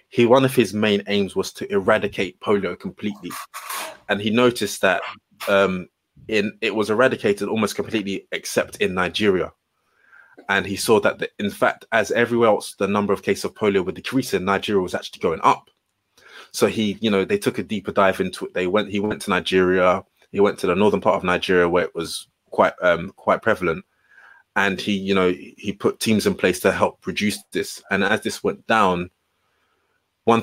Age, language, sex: 20-39, English, male